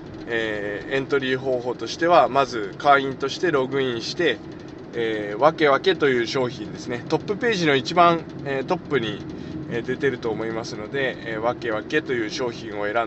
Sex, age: male, 20-39